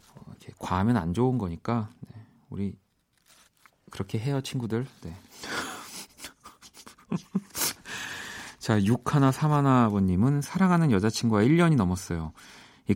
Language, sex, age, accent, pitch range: Korean, male, 40-59, native, 90-130 Hz